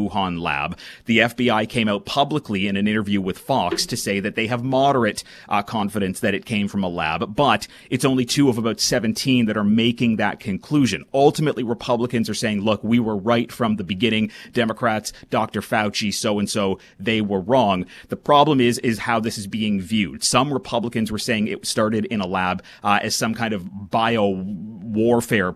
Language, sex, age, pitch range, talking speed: English, male, 30-49, 100-120 Hz, 190 wpm